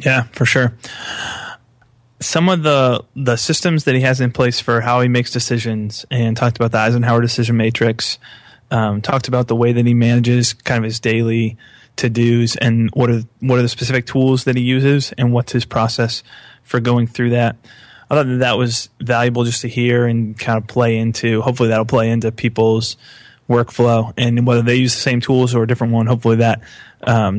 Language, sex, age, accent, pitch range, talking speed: English, male, 20-39, American, 115-125 Hz, 200 wpm